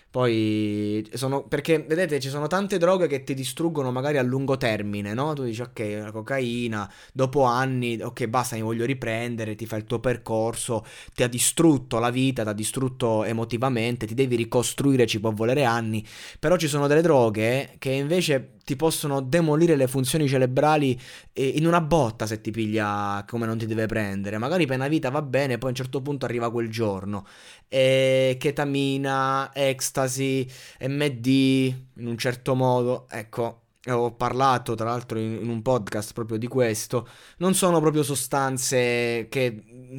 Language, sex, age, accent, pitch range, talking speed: Italian, male, 20-39, native, 115-135 Hz, 170 wpm